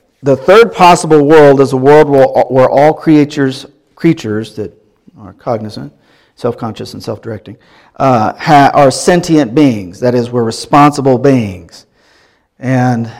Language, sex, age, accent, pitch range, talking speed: English, male, 50-69, American, 115-145 Hz, 125 wpm